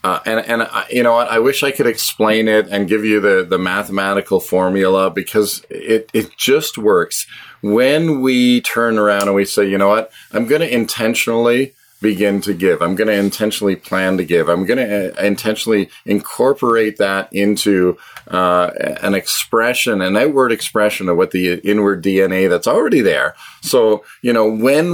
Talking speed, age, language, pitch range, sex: 180 wpm, 40-59, English, 100-120 Hz, male